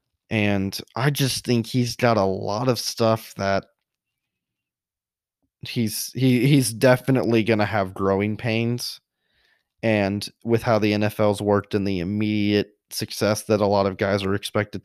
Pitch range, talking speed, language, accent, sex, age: 95-115 Hz, 150 wpm, English, American, male, 20-39